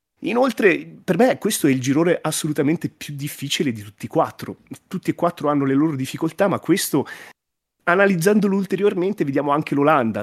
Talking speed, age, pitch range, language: 165 wpm, 30-49, 130-165 Hz, Italian